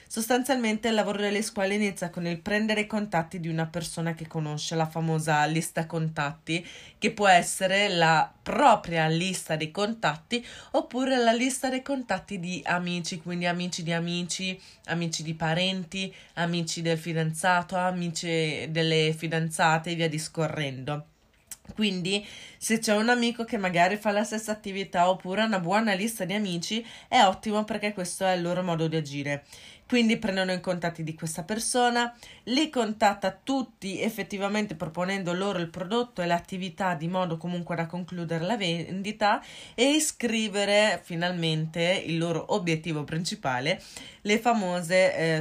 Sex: female